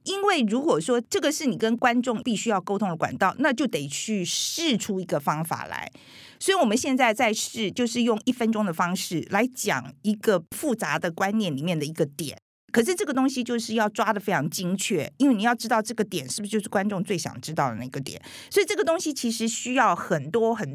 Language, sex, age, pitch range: Chinese, female, 50-69, 180-250 Hz